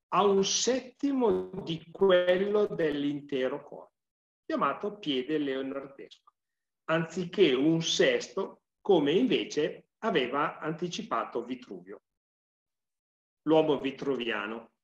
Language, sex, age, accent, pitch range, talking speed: Italian, male, 40-59, native, 130-190 Hz, 80 wpm